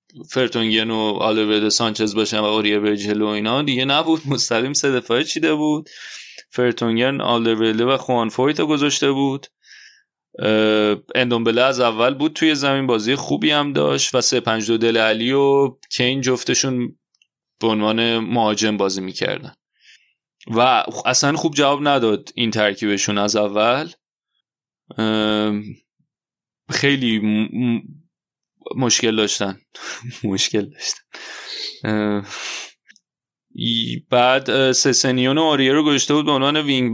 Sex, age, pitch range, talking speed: male, 20-39, 110-130 Hz, 105 wpm